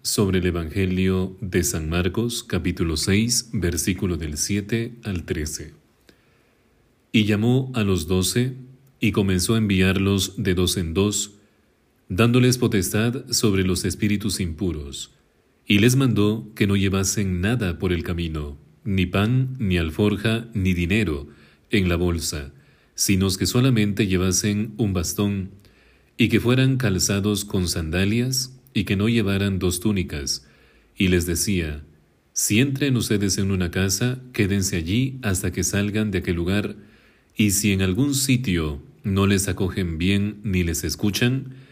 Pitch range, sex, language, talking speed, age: 90-115 Hz, male, Spanish, 140 wpm, 40-59